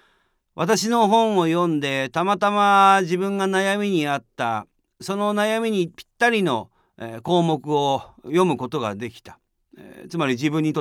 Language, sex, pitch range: Japanese, male, 140-210 Hz